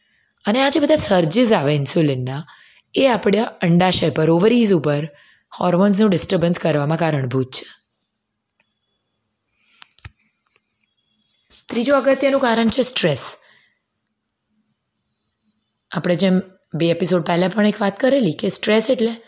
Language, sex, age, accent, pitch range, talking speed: Gujarati, female, 20-39, native, 160-215 Hz, 70 wpm